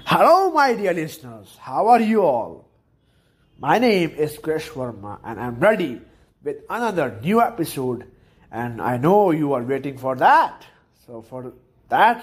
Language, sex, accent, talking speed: English, male, Indian, 145 wpm